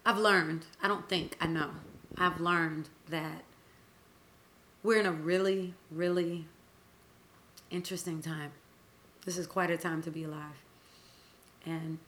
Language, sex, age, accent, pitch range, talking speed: English, female, 30-49, American, 150-170 Hz, 130 wpm